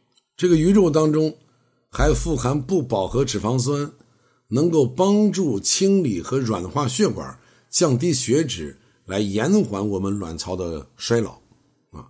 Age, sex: 60-79, male